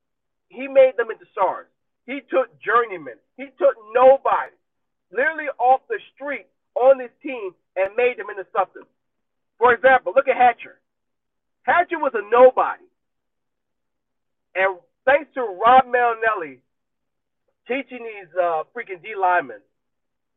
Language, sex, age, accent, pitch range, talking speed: English, male, 40-59, American, 185-270 Hz, 125 wpm